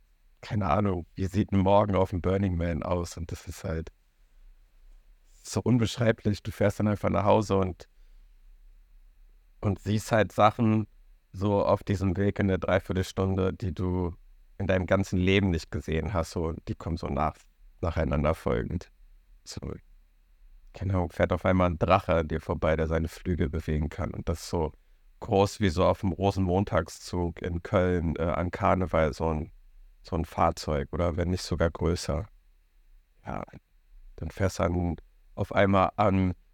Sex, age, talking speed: male, 60-79, 165 wpm